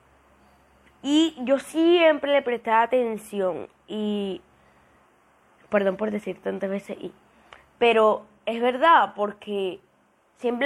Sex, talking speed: female, 100 wpm